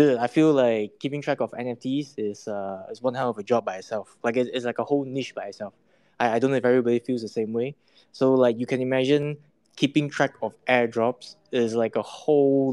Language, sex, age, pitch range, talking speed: English, male, 20-39, 110-130 Hz, 230 wpm